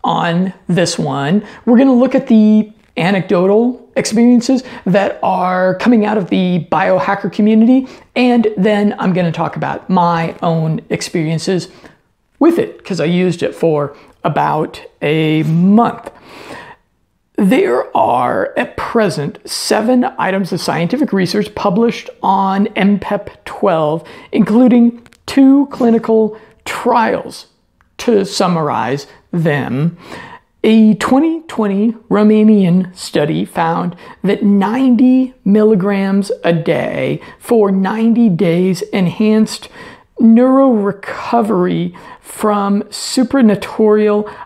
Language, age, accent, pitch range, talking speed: English, 50-69, American, 175-230 Hz, 105 wpm